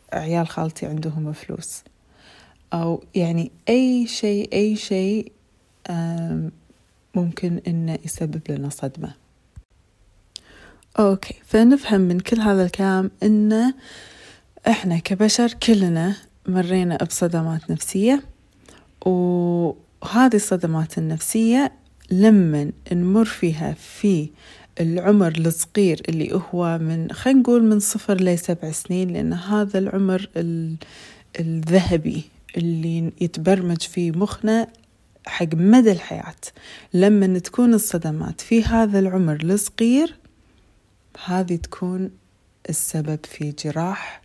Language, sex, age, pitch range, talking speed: Arabic, female, 30-49, 160-205 Hz, 95 wpm